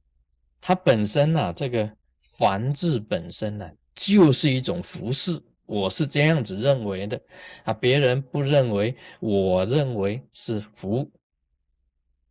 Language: Chinese